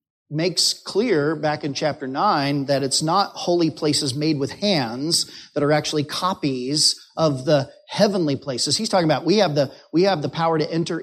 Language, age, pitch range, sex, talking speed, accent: English, 40-59, 140-180 Hz, male, 185 wpm, American